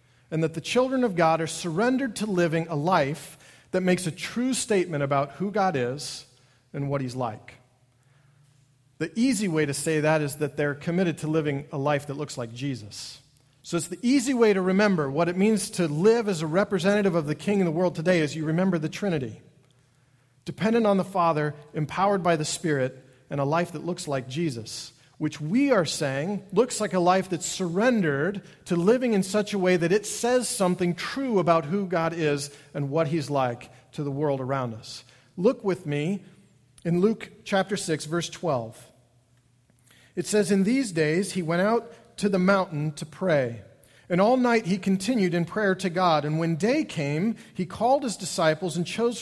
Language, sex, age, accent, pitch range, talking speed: English, male, 40-59, American, 140-195 Hz, 195 wpm